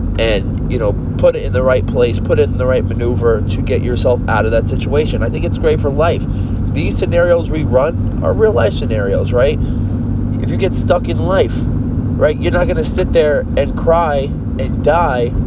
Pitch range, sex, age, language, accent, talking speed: 105-130 Hz, male, 30-49, English, American, 205 wpm